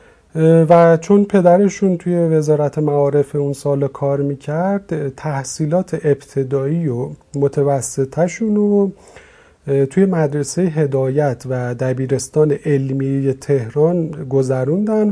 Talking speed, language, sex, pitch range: 95 wpm, Persian, male, 145-185 Hz